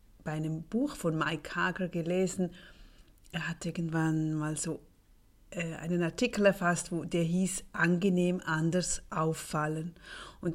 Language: German